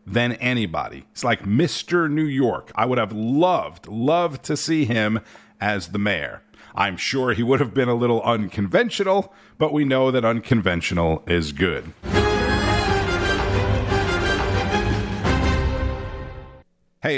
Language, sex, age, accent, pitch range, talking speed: English, male, 50-69, American, 105-160 Hz, 120 wpm